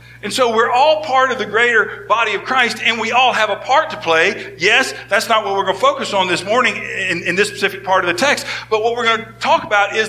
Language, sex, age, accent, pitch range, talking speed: English, male, 50-69, American, 150-225 Hz, 275 wpm